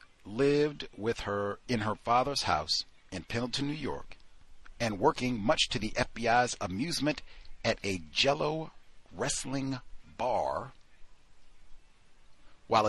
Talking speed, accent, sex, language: 110 wpm, American, male, English